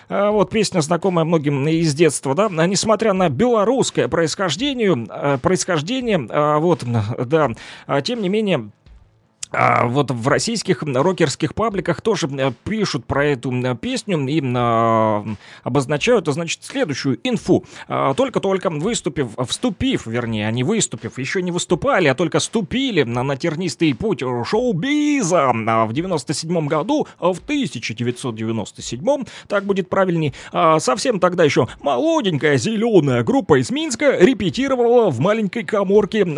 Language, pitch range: Russian, 140-220 Hz